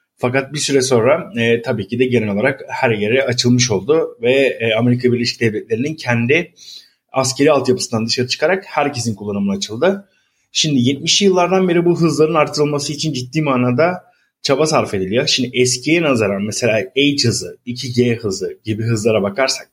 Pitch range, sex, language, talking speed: 120-160 Hz, male, Turkish, 155 wpm